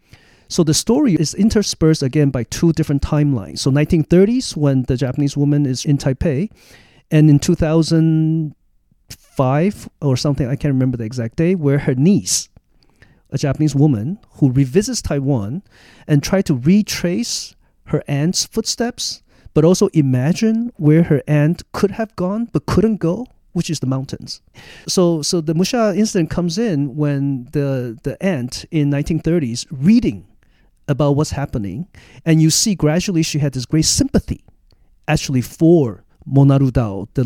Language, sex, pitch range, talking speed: English, male, 135-170 Hz, 150 wpm